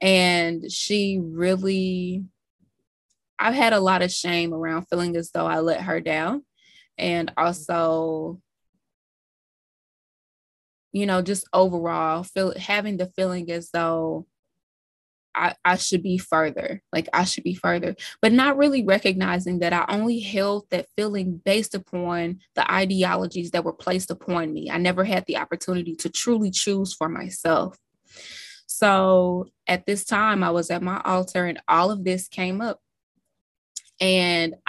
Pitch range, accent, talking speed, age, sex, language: 170-195 Hz, American, 145 wpm, 20-39, female, English